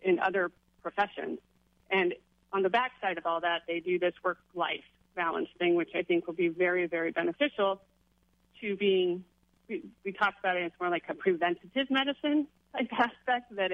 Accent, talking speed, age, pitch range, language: American, 180 wpm, 30-49, 175-210 Hz, English